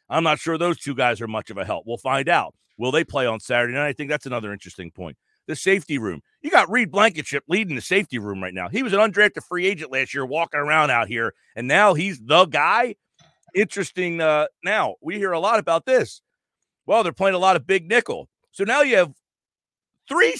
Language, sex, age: English, male, 40-59